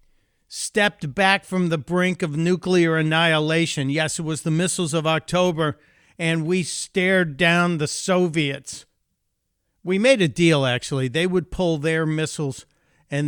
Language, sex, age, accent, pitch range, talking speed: English, male, 50-69, American, 140-180 Hz, 145 wpm